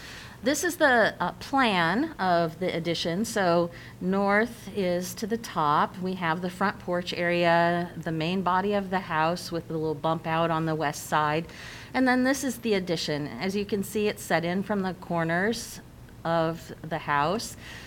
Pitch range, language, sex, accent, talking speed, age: 155-205 Hz, English, female, American, 180 wpm, 40-59